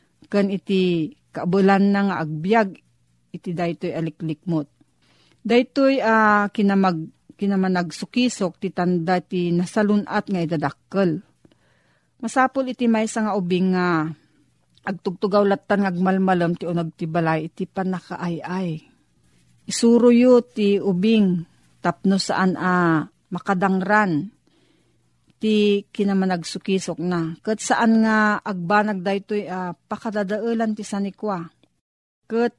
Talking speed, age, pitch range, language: 105 wpm, 40-59, 175-215 Hz, Filipino